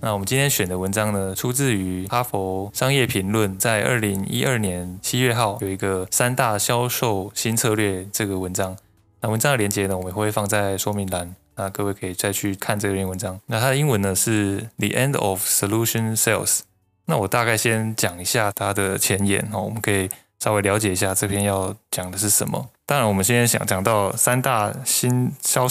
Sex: male